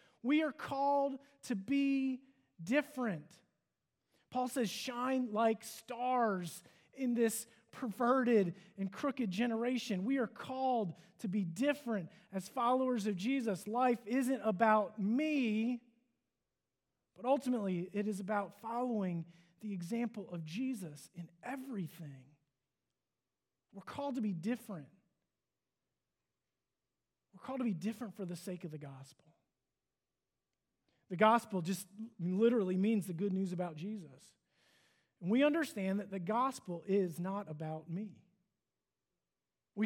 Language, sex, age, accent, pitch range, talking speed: English, male, 30-49, American, 180-250 Hz, 120 wpm